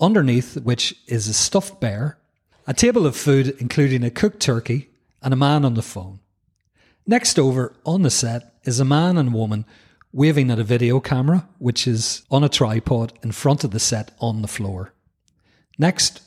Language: English